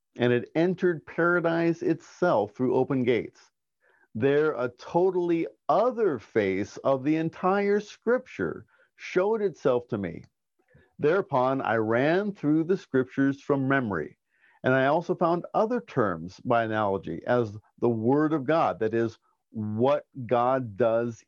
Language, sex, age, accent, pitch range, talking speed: English, male, 50-69, American, 115-160 Hz, 135 wpm